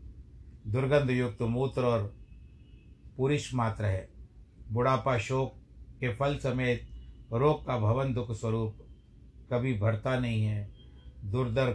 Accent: native